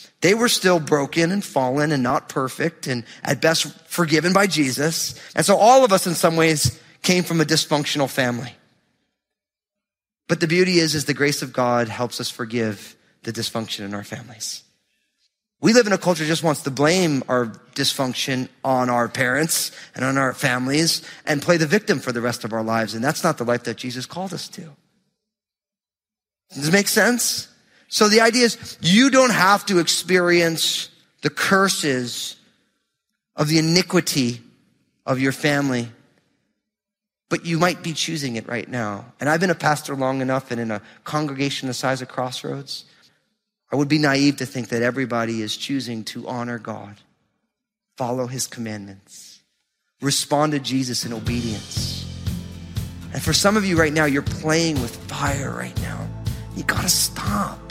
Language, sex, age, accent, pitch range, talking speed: English, male, 30-49, American, 120-175 Hz, 175 wpm